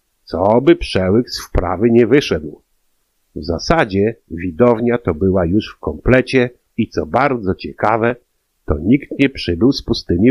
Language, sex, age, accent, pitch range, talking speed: Polish, male, 50-69, native, 95-120 Hz, 145 wpm